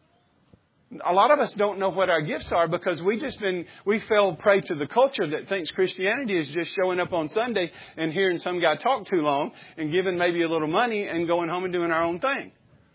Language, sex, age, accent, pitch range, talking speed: English, male, 50-69, American, 170-215 Hz, 230 wpm